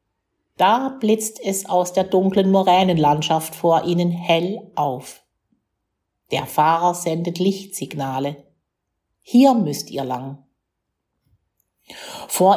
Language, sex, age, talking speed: German, female, 50-69, 95 wpm